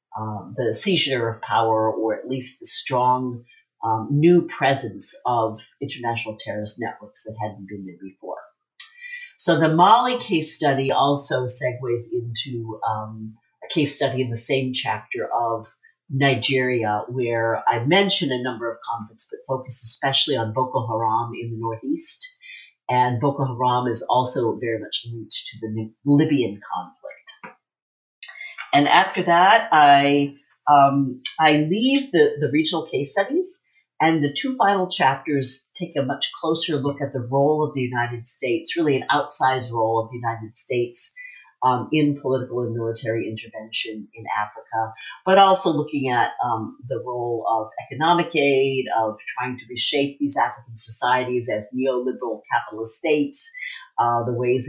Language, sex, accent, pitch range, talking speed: English, female, American, 115-150 Hz, 150 wpm